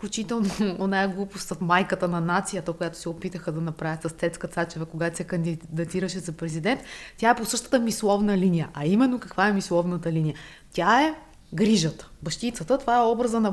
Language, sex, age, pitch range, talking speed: Bulgarian, female, 20-39, 170-225 Hz, 175 wpm